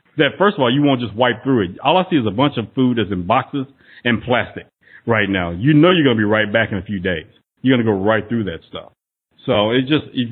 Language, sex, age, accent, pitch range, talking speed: English, male, 40-59, American, 110-140 Hz, 285 wpm